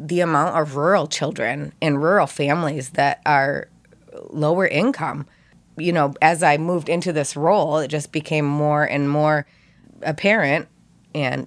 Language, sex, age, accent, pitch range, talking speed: English, female, 20-39, American, 145-175 Hz, 145 wpm